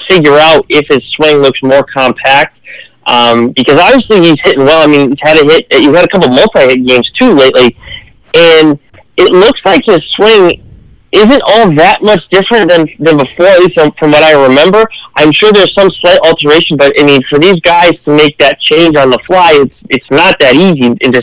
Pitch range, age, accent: 130-175 Hz, 30-49, American